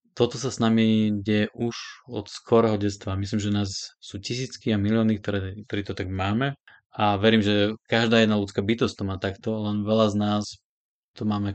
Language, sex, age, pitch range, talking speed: Slovak, male, 20-39, 100-115 Hz, 190 wpm